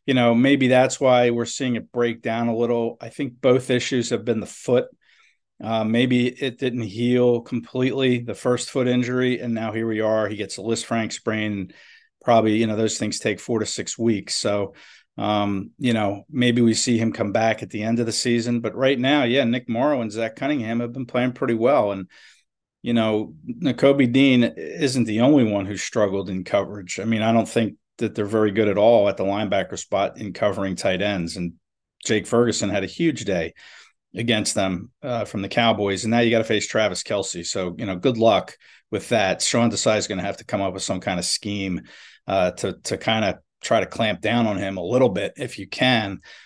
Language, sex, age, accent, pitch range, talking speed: English, male, 50-69, American, 110-125 Hz, 225 wpm